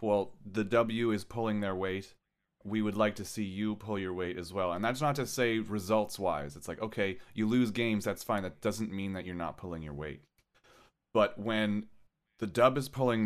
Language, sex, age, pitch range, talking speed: English, male, 30-49, 95-115 Hz, 215 wpm